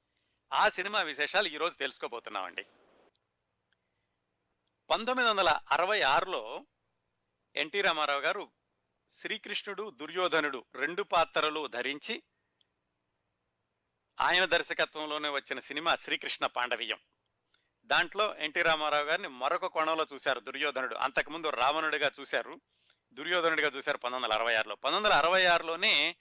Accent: native